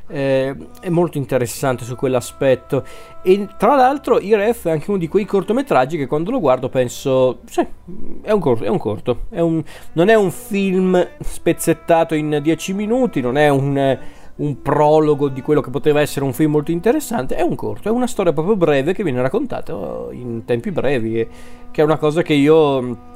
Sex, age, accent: male, 40-59, native